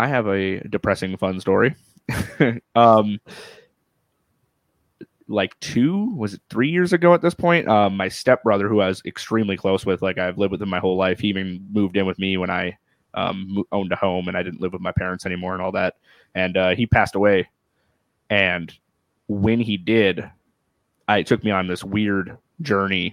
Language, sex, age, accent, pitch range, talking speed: English, male, 20-39, American, 95-115 Hz, 190 wpm